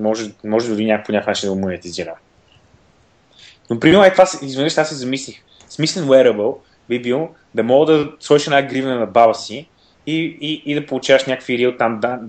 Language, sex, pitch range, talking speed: Bulgarian, male, 105-135 Hz, 180 wpm